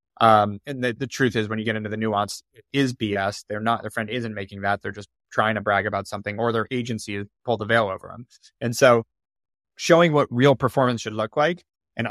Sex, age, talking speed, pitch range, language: male, 20-39, 240 wpm, 105-125 Hz, English